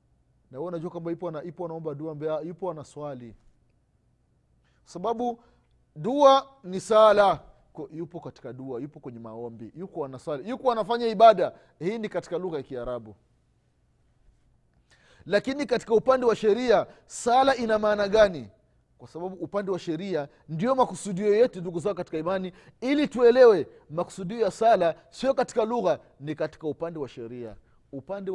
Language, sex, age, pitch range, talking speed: Swahili, male, 30-49, 150-220 Hz, 130 wpm